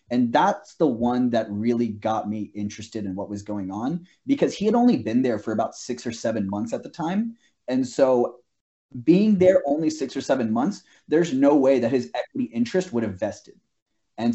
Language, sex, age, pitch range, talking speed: English, male, 20-39, 115-185 Hz, 205 wpm